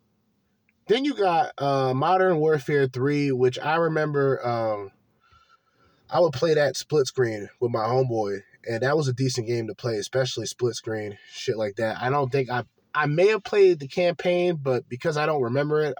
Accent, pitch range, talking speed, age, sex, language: American, 120-155 Hz, 190 wpm, 20-39, male, English